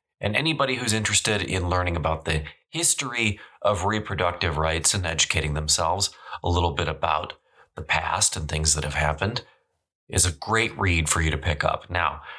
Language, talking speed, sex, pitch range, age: English, 175 wpm, male, 80-100 Hz, 30-49